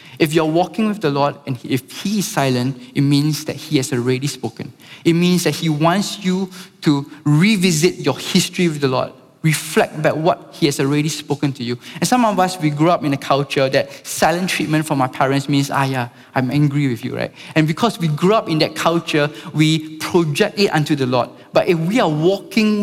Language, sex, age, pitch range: English, male, 20-39, 140-180 Hz